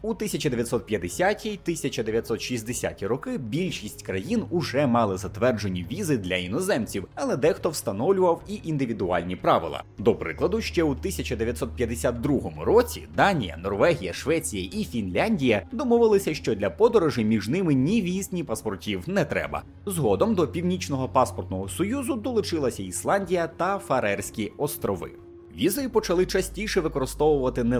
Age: 30-49